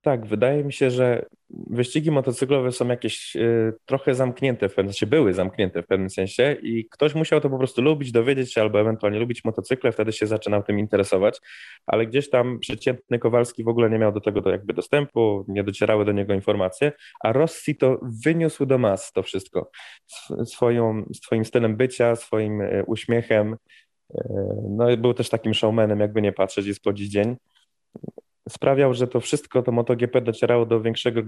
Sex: male